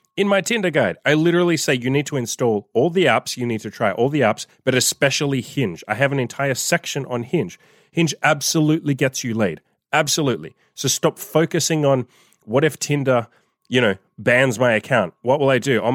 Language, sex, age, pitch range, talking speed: English, male, 30-49, 115-150 Hz, 205 wpm